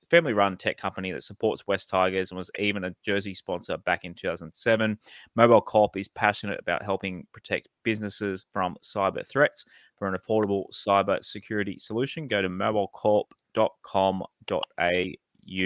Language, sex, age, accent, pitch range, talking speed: English, male, 20-39, Australian, 90-110 Hz, 140 wpm